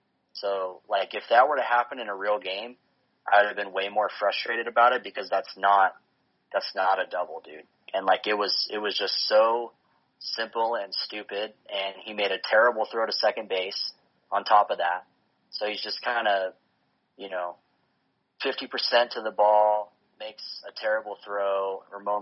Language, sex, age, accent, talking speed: English, male, 30-49, American, 185 wpm